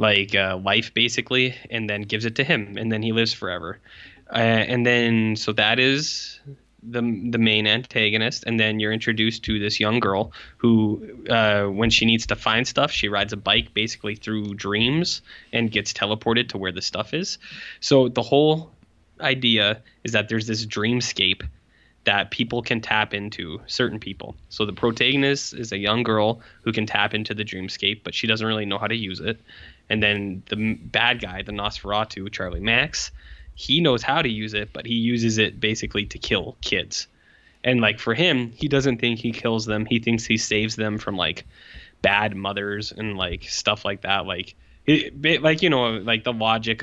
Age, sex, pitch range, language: 10-29, male, 105-120 Hz, English